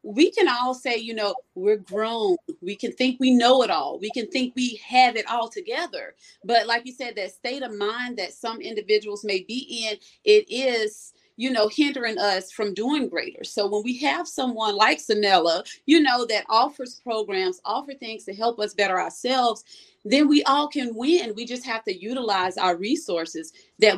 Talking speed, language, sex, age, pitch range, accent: 195 wpm, English, female, 30-49, 210-270 Hz, American